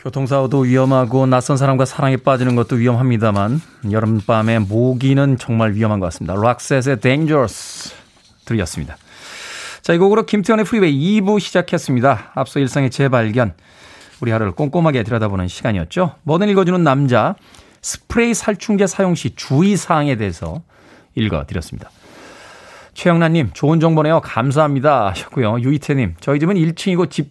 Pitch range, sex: 125-185 Hz, male